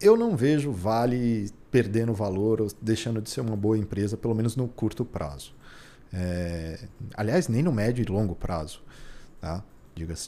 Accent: Brazilian